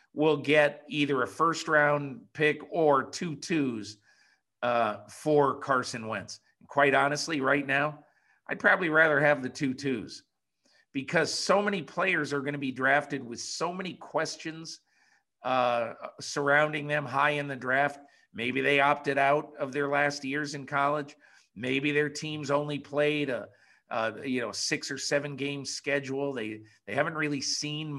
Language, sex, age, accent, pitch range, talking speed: English, male, 50-69, American, 130-150 Hz, 155 wpm